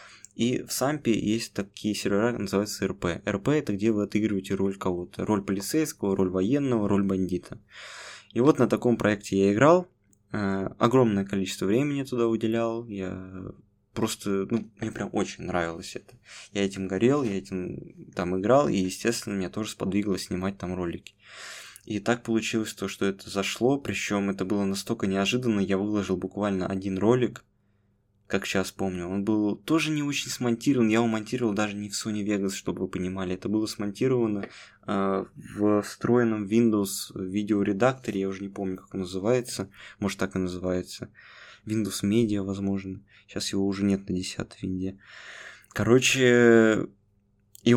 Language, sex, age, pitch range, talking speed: Russian, male, 20-39, 95-115 Hz, 160 wpm